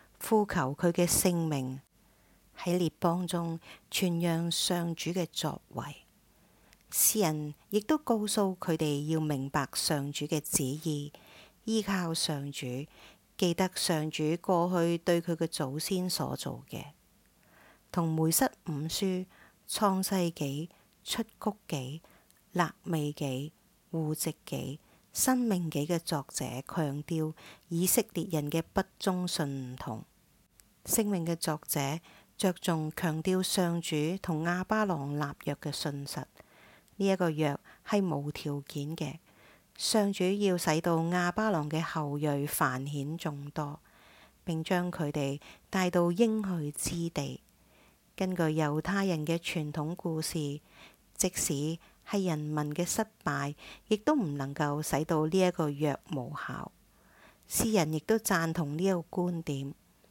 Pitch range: 150-185 Hz